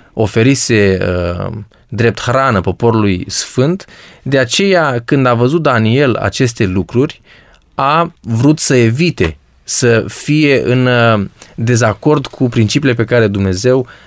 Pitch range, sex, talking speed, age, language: 110-140 Hz, male, 110 wpm, 20-39, Romanian